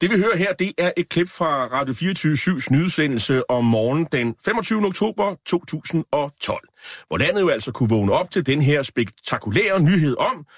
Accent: native